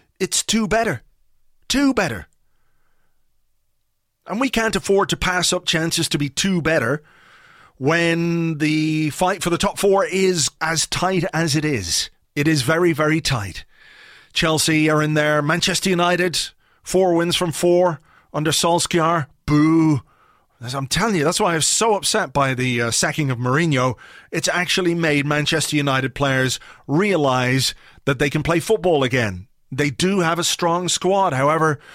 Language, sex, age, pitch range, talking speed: English, male, 30-49, 140-175 Hz, 160 wpm